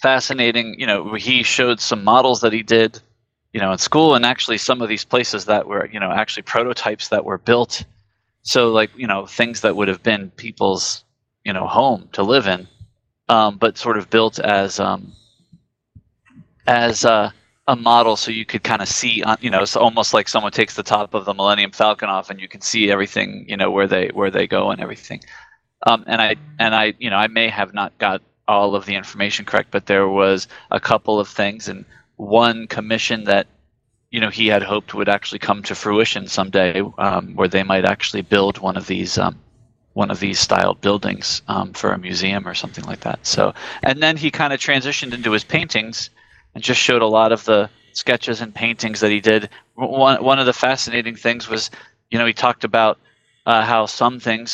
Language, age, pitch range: English, 30-49, 100-120 Hz